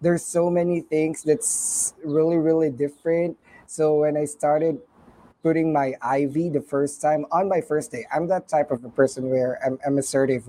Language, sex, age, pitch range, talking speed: English, male, 20-39, 140-165 Hz, 185 wpm